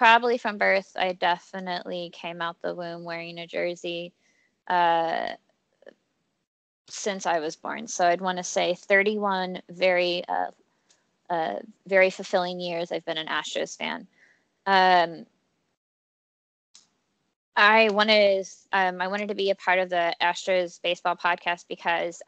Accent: American